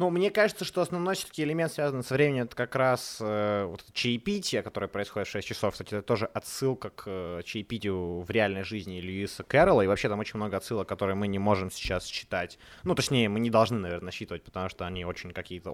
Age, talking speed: 20-39, 215 wpm